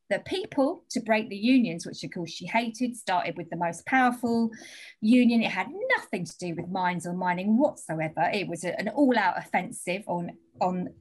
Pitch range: 185-275 Hz